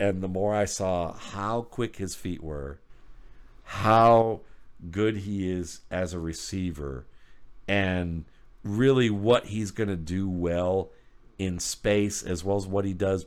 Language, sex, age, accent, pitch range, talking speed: English, male, 50-69, American, 90-110 Hz, 150 wpm